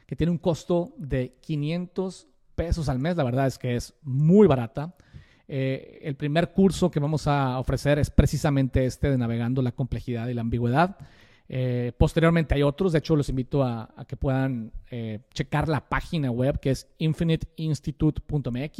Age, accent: 40-59, Mexican